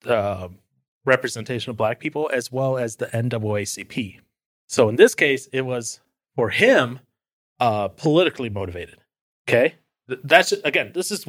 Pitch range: 115-145 Hz